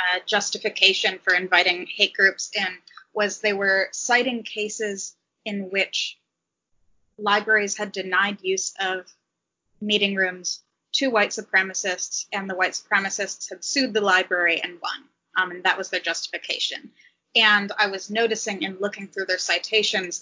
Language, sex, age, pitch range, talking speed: English, female, 20-39, 185-210 Hz, 145 wpm